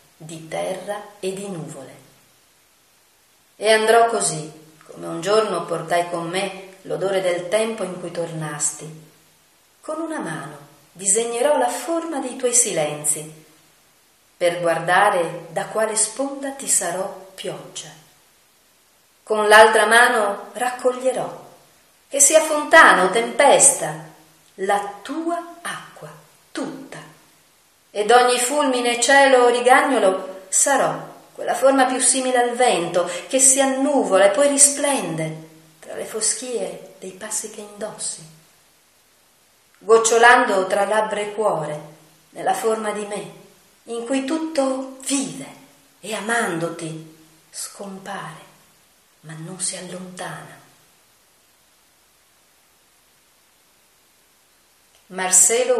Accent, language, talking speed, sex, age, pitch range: native, Italian, 105 wpm, female, 40-59, 170-245 Hz